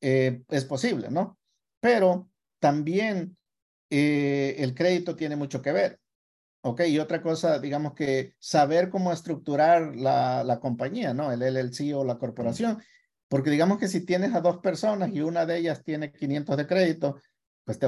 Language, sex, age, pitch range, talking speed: Spanish, male, 50-69, 130-170 Hz, 165 wpm